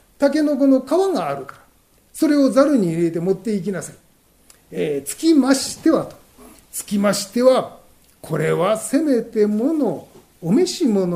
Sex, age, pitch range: male, 40-59, 230-330 Hz